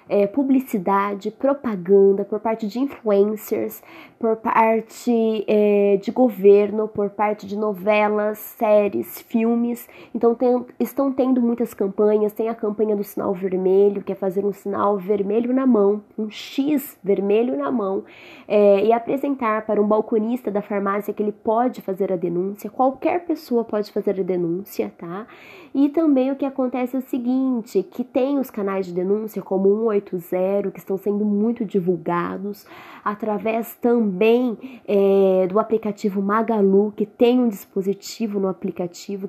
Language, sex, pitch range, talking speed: Portuguese, female, 200-235 Hz, 140 wpm